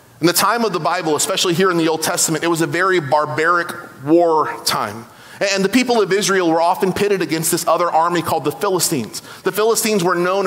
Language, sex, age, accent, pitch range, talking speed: English, male, 30-49, American, 165-205 Hz, 220 wpm